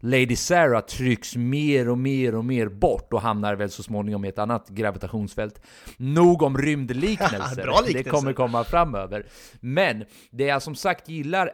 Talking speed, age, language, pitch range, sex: 155 wpm, 30-49, Swedish, 110-150 Hz, male